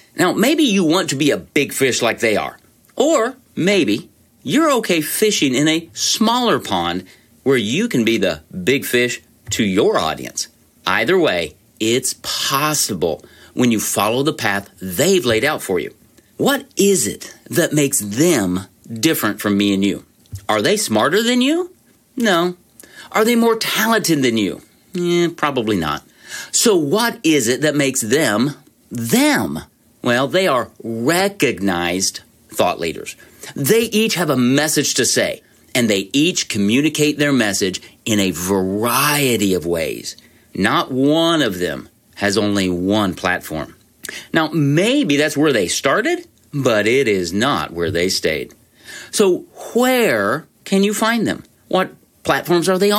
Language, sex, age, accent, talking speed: English, male, 40-59, American, 150 wpm